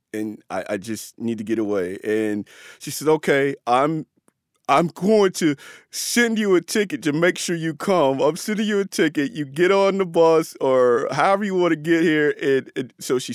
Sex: male